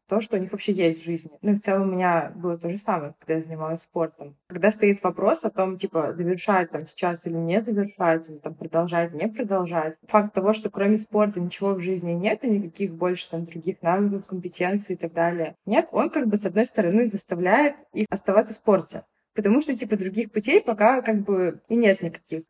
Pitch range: 170-215 Hz